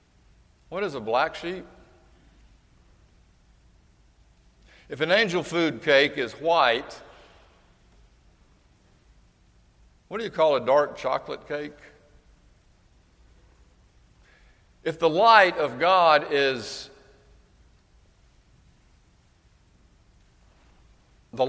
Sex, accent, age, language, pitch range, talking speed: male, American, 60-79, English, 100-155 Hz, 75 wpm